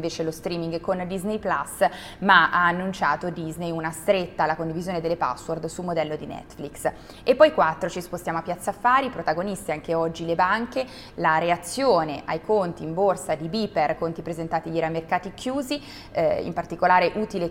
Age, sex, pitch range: 20-39, female, 170-205 Hz